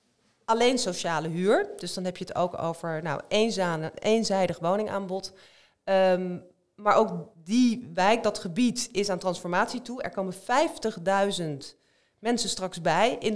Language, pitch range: Dutch, 180-225 Hz